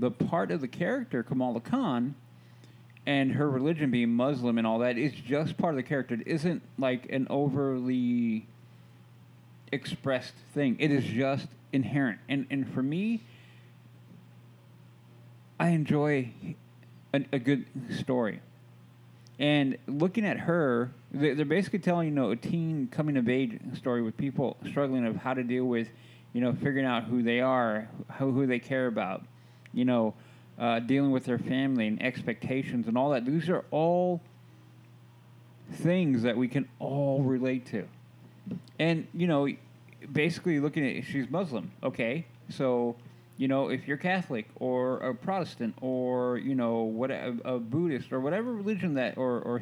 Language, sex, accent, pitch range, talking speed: English, male, American, 120-140 Hz, 160 wpm